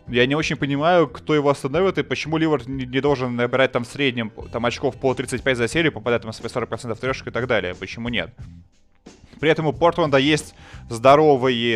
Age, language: 20-39, Russian